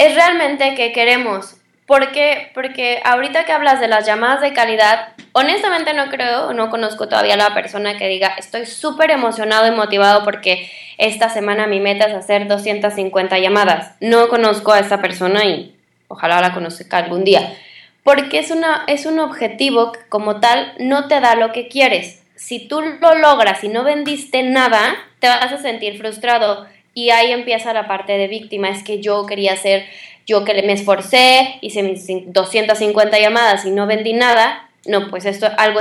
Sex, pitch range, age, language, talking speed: female, 205-255 Hz, 20-39, Spanish, 180 wpm